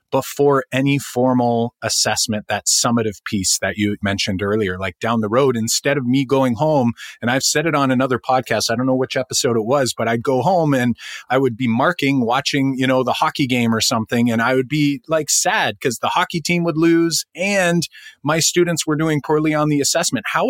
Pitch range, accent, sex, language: 115-150 Hz, American, male, English